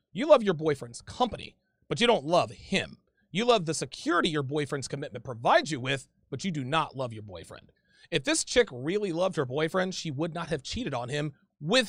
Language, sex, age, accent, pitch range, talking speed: English, male, 30-49, American, 145-195 Hz, 210 wpm